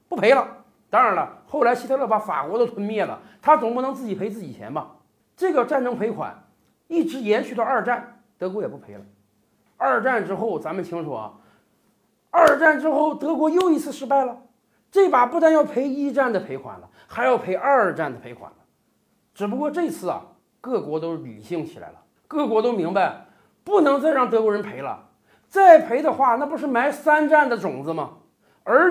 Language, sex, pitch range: Chinese, male, 205-295 Hz